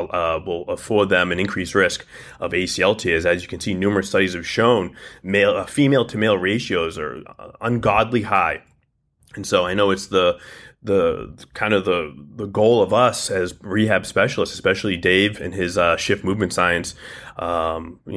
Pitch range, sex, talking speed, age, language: 100-140 Hz, male, 170 wpm, 30-49, English